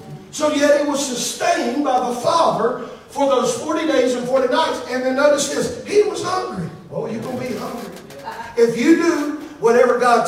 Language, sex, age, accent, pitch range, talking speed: English, male, 40-59, American, 245-330 Hz, 195 wpm